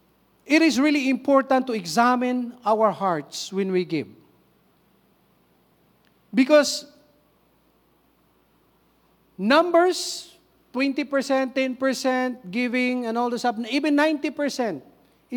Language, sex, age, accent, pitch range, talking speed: English, male, 50-69, Filipino, 210-275 Hz, 85 wpm